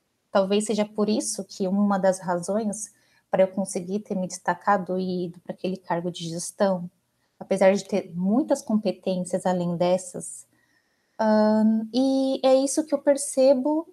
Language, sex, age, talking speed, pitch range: Portuguese, female, 20-39, 145 wpm, 185-255 Hz